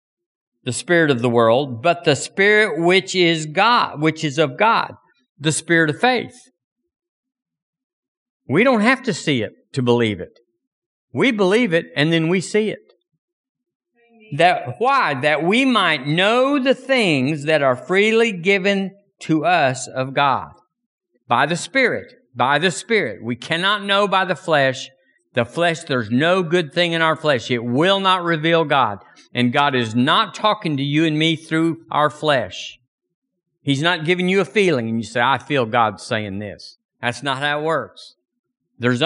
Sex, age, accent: male, 50-69, American